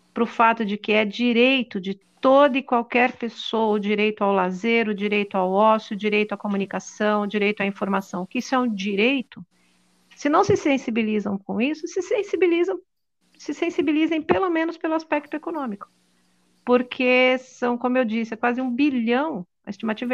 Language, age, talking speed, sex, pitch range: Portuguese, 50-69, 175 wpm, female, 205-270 Hz